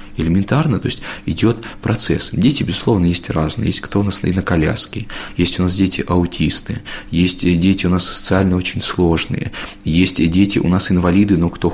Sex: male